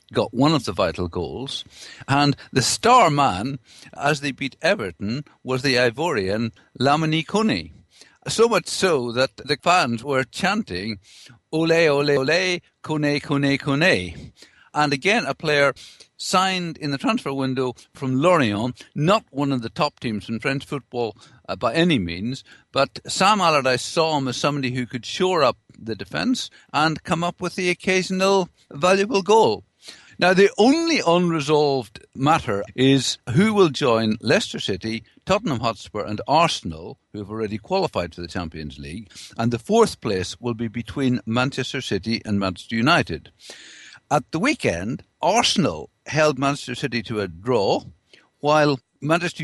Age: 50-69